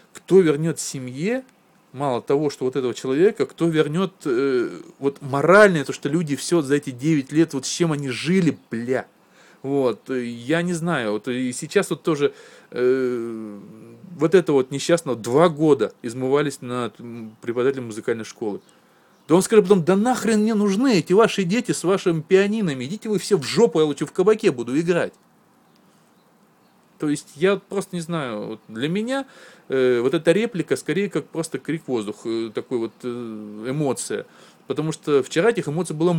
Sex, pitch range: male, 125-180 Hz